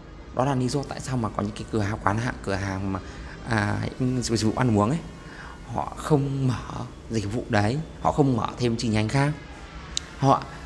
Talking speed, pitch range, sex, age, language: 205 wpm, 100-125 Hz, male, 20-39, Vietnamese